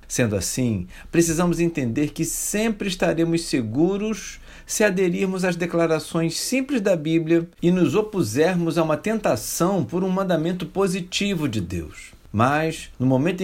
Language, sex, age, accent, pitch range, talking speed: Portuguese, male, 50-69, Brazilian, 115-170 Hz, 135 wpm